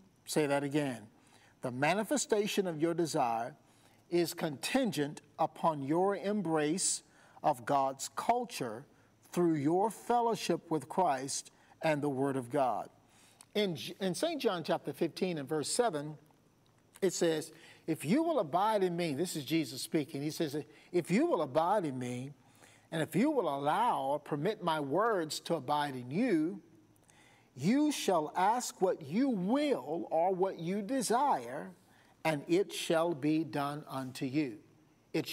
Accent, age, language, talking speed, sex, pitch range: American, 50-69, English, 145 wpm, male, 145-185 Hz